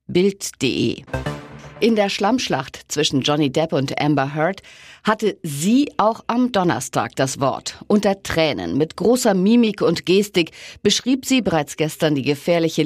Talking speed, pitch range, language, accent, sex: 140 wpm, 150-205 Hz, German, German, female